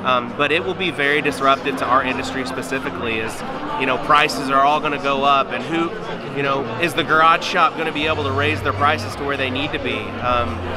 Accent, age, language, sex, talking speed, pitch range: American, 30-49, English, male, 245 wpm, 125-155 Hz